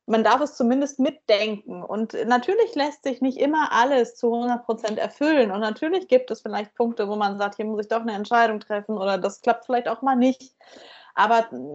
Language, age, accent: English, 20-39, German